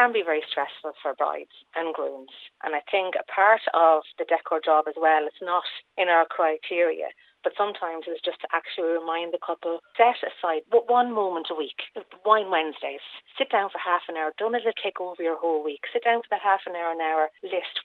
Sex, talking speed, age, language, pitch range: female, 220 wpm, 30-49, English, 165-210 Hz